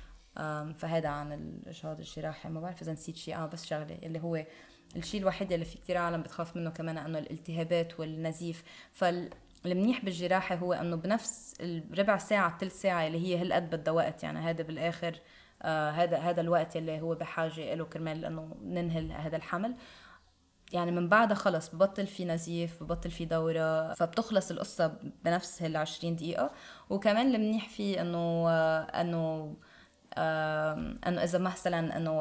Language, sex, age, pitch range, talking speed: Arabic, female, 20-39, 160-180 Hz, 150 wpm